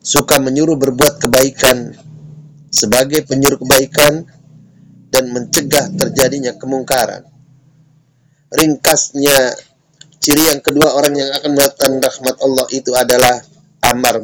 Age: 30-49